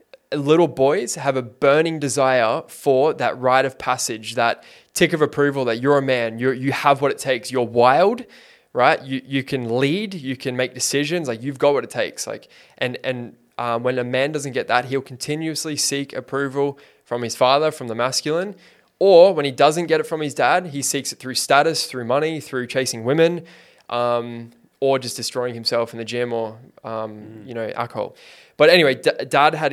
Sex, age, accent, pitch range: male, 20-39, Australian, 125-160 Hz